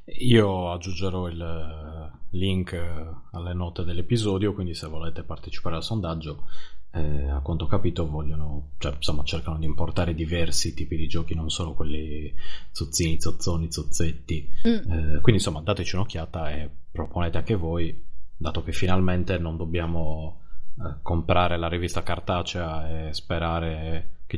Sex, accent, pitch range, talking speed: male, native, 80-90 Hz, 140 wpm